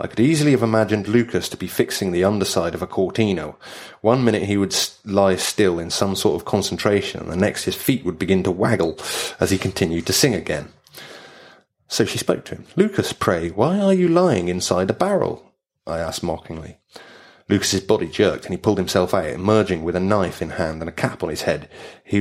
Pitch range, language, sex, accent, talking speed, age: 90-120 Hz, English, male, British, 215 wpm, 30-49